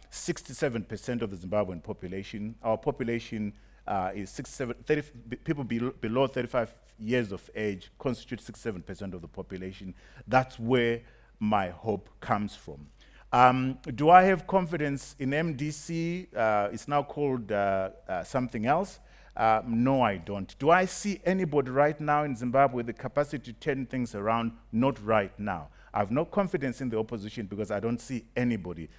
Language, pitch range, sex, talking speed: English, 105-135 Hz, male, 160 wpm